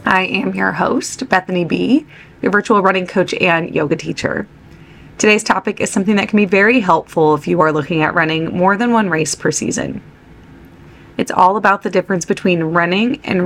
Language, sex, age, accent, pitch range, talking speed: English, female, 20-39, American, 165-205 Hz, 185 wpm